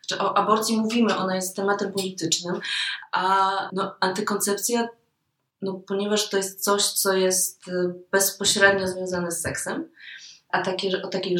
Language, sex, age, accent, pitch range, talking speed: Polish, female, 20-39, native, 160-200 Hz, 135 wpm